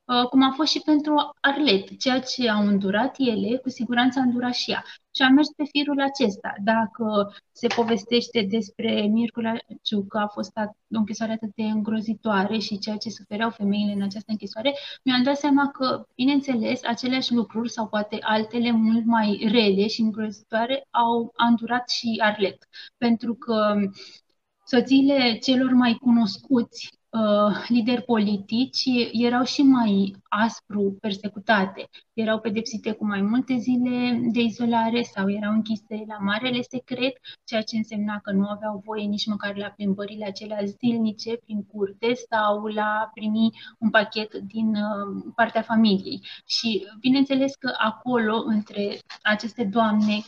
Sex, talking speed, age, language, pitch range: female, 145 wpm, 20-39, Romanian, 210-245 Hz